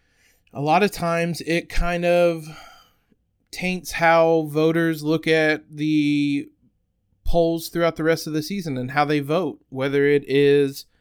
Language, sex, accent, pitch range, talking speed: English, male, American, 130-165 Hz, 145 wpm